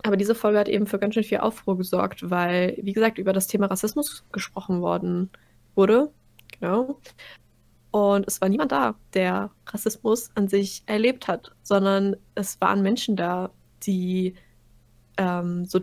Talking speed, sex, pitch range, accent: 155 wpm, female, 180-205 Hz, German